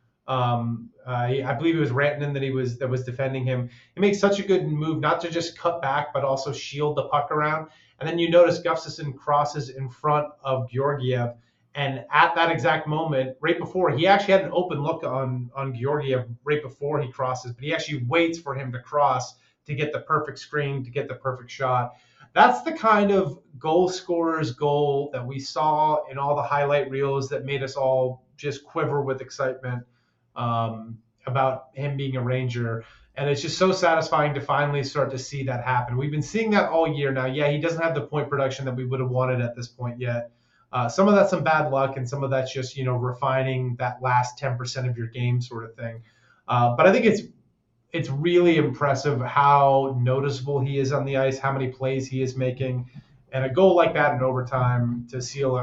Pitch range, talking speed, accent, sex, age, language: 125-150 Hz, 210 wpm, American, male, 30-49, English